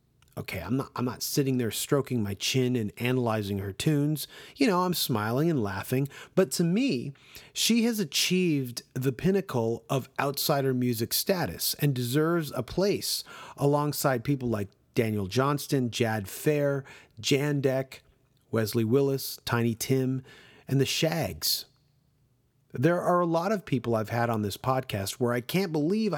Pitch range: 125-155 Hz